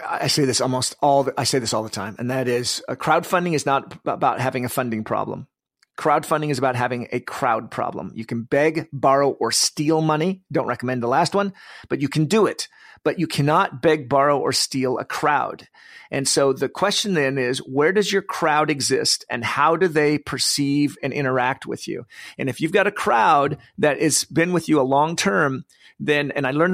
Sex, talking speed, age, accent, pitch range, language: male, 215 wpm, 40-59, American, 135-170 Hz, English